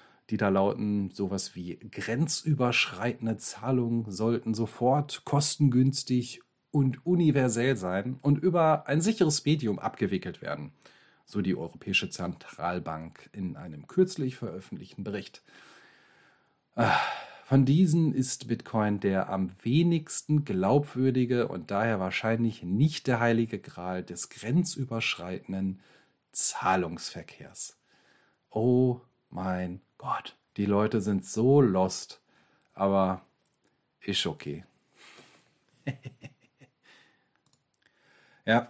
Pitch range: 100-135 Hz